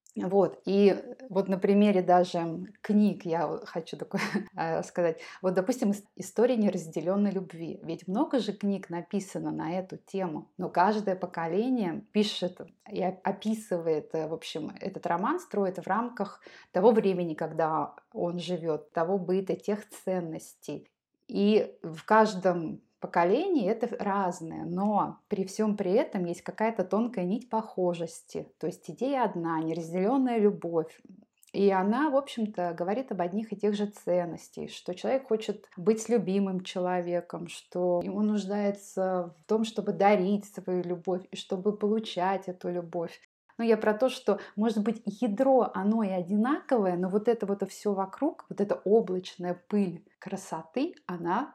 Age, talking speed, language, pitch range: 20-39, 140 wpm, Russian, 180-215 Hz